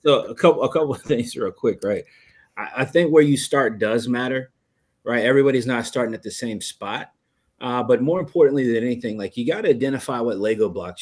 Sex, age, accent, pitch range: male, 30-49, American, 115-140 Hz